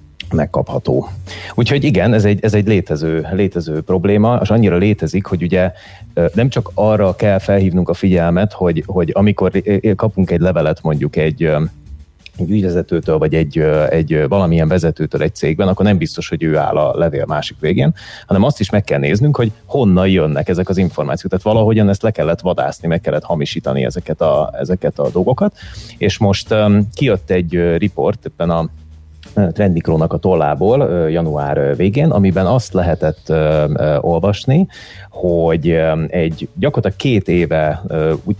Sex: male